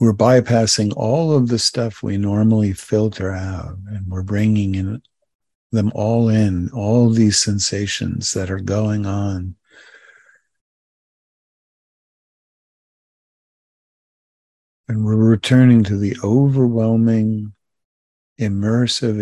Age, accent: 50-69, American